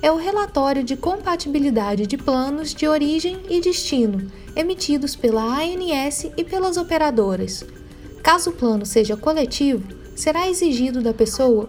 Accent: Brazilian